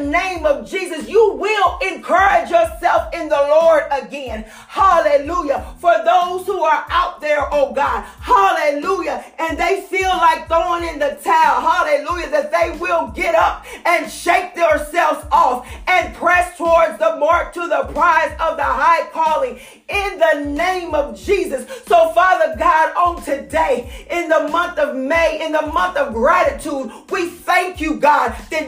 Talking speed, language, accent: 155 wpm, English, American